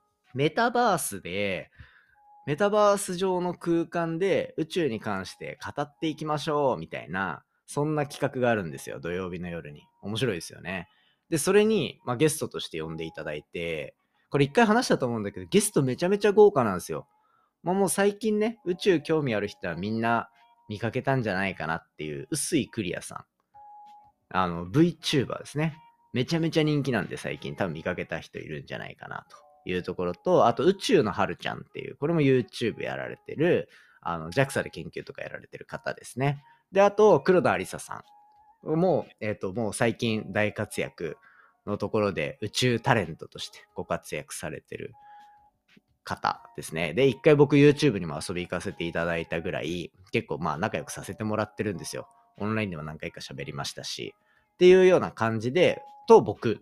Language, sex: Japanese, male